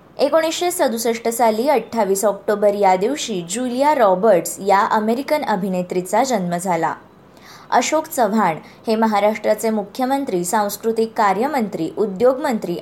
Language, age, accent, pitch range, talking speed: Marathi, 20-39, native, 185-235 Hz, 105 wpm